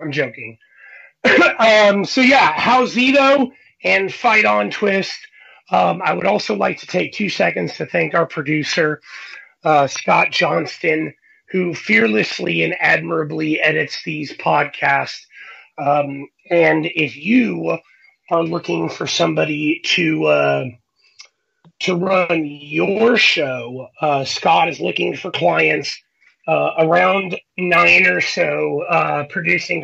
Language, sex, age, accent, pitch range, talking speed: English, male, 30-49, American, 155-195 Hz, 125 wpm